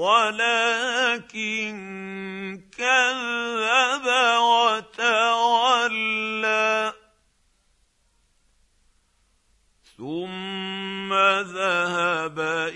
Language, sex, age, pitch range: English, male, 50-69, 190-235 Hz